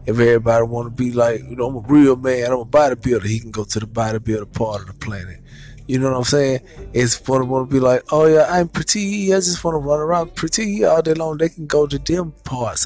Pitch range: 125-180 Hz